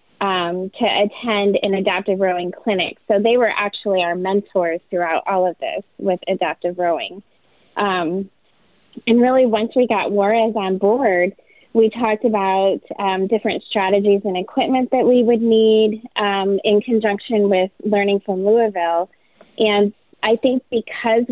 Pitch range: 190-220 Hz